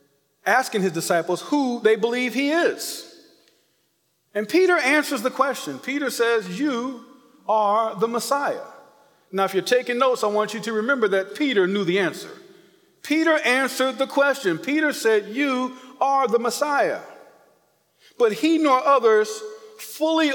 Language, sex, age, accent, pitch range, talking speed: English, male, 40-59, American, 195-275 Hz, 145 wpm